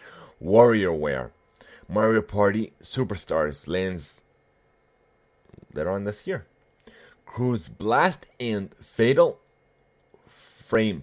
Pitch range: 85-110 Hz